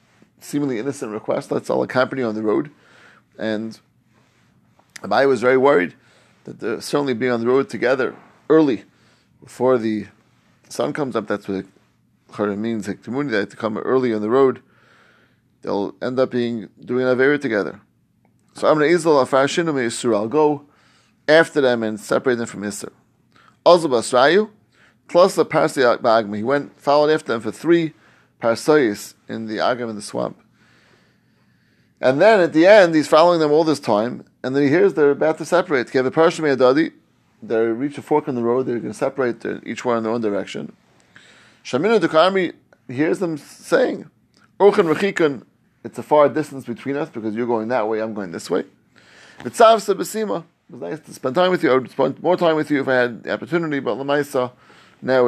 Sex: male